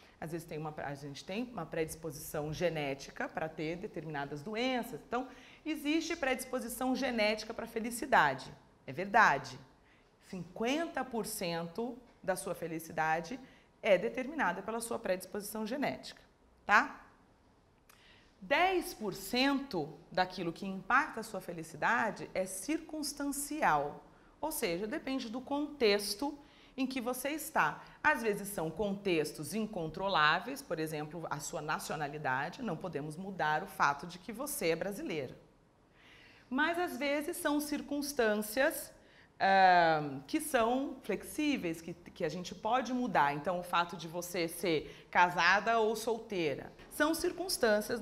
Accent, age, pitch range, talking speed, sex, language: Brazilian, 40-59, 165-255 Hz, 120 wpm, female, Portuguese